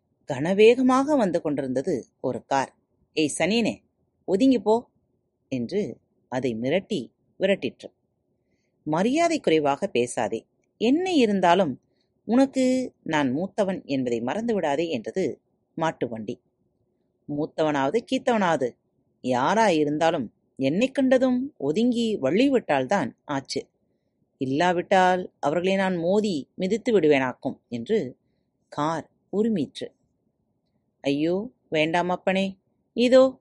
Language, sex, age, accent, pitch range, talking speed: Tamil, female, 30-49, native, 145-235 Hz, 80 wpm